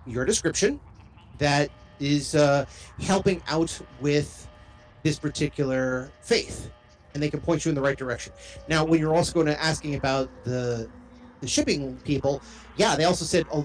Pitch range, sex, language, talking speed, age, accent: 130-160 Hz, male, English, 165 wpm, 30-49, American